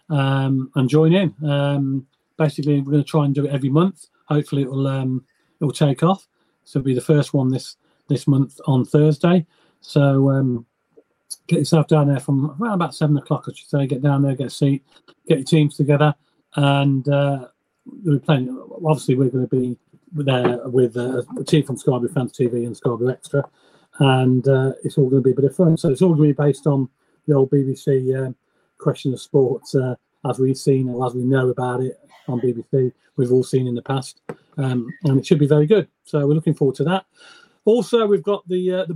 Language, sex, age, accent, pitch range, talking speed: English, male, 40-59, British, 135-155 Hz, 220 wpm